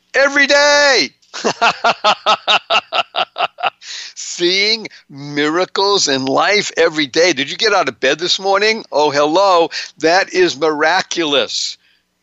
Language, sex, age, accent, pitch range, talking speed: English, male, 60-79, American, 140-190 Hz, 105 wpm